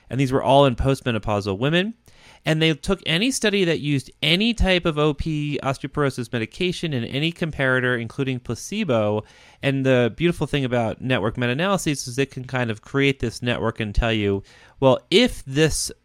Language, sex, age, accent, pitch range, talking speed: English, male, 30-49, American, 110-150 Hz, 170 wpm